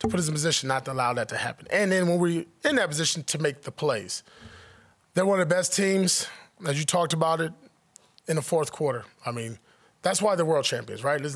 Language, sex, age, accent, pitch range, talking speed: English, male, 20-39, American, 140-175 Hz, 245 wpm